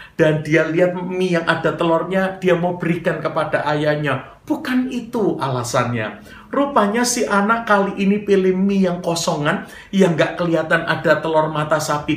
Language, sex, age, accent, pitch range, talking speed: Indonesian, male, 50-69, native, 145-220 Hz, 155 wpm